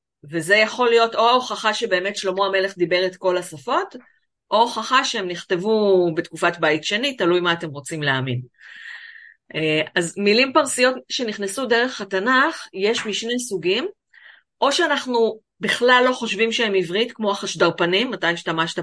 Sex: female